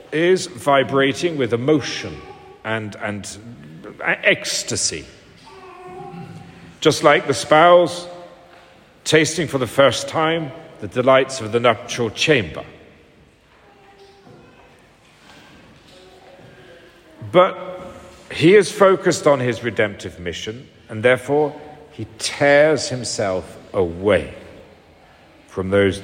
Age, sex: 50-69, male